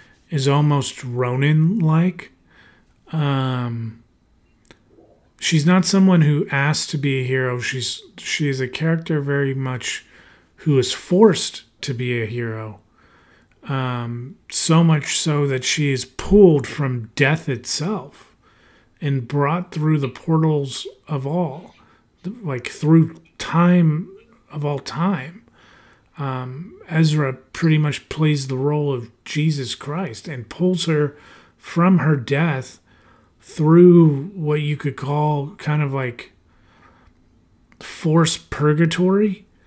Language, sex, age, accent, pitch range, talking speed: English, male, 30-49, American, 120-160 Hz, 115 wpm